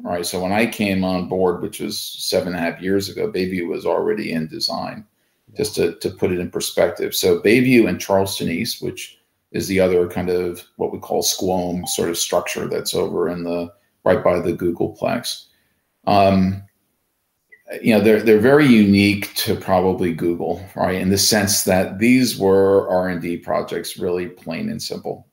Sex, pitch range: male, 90-105 Hz